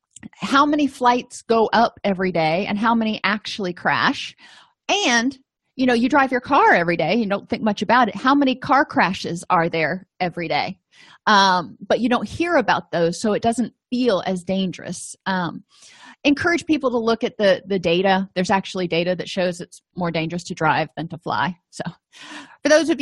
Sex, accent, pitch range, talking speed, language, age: female, American, 185-255 Hz, 195 wpm, English, 30-49